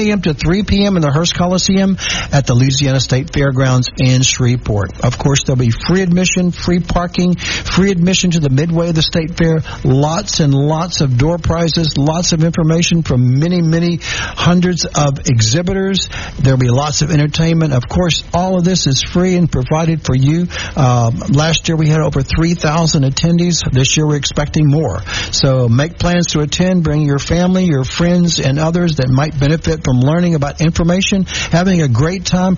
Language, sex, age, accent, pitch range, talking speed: English, male, 60-79, American, 135-175 Hz, 180 wpm